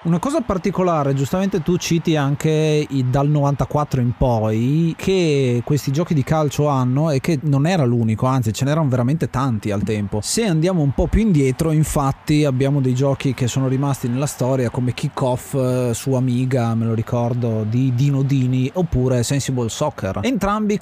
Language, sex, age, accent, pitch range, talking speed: Italian, male, 30-49, native, 125-155 Hz, 175 wpm